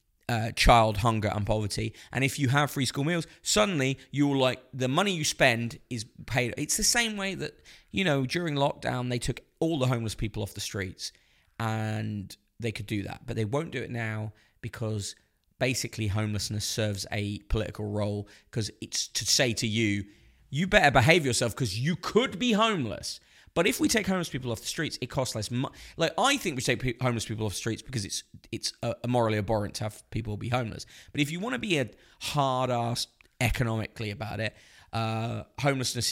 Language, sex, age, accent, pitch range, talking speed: English, male, 20-39, British, 105-135 Hz, 200 wpm